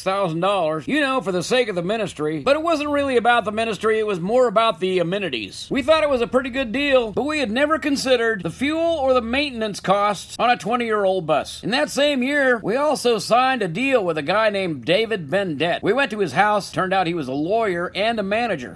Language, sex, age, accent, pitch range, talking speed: English, male, 50-69, American, 190-260 Hz, 240 wpm